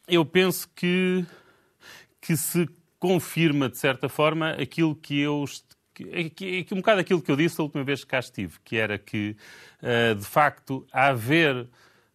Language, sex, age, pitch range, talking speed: Portuguese, male, 30-49, 110-150 Hz, 150 wpm